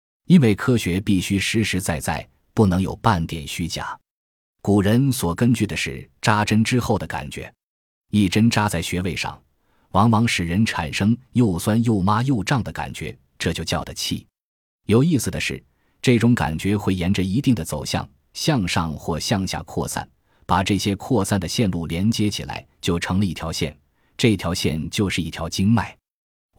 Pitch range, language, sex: 85-110 Hz, Chinese, male